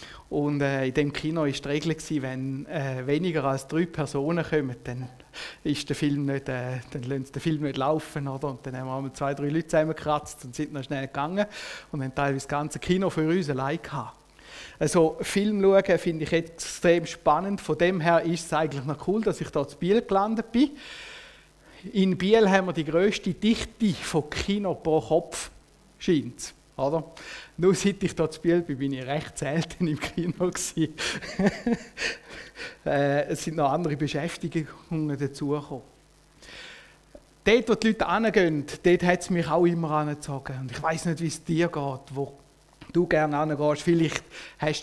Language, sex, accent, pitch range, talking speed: German, male, Austrian, 145-175 Hz, 175 wpm